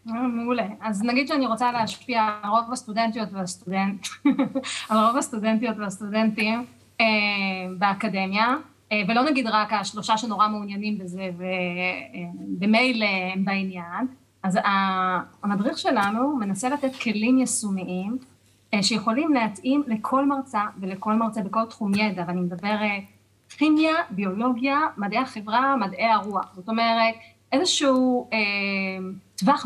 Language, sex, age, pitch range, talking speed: Hebrew, female, 30-49, 200-255 Hz, 105 wpm